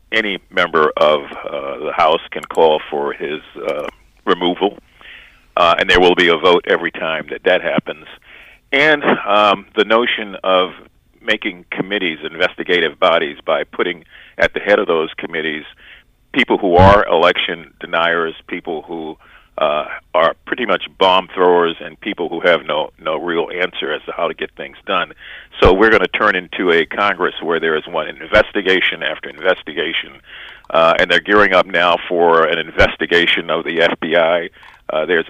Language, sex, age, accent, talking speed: English, male, 50-69, American, 165 wpm